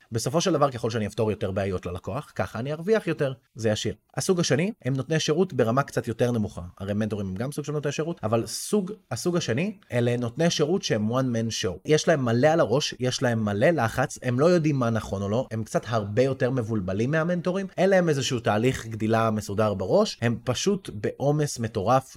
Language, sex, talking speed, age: Hebrew, male, 205 wpm, 20-39